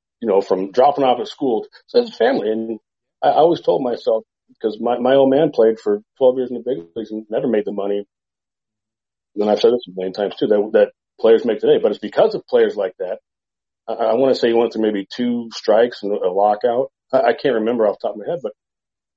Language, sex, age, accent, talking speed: English, male, 40-59, American, 250 wpm